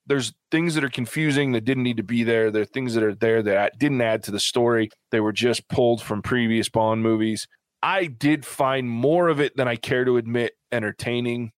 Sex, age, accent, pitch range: male, 20-39, American, 110-130 Hz